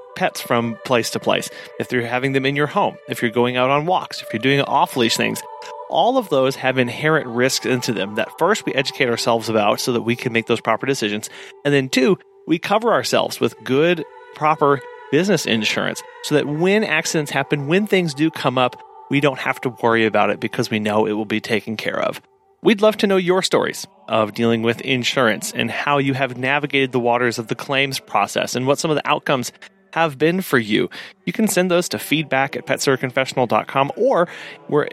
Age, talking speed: 30-49, 210 wpm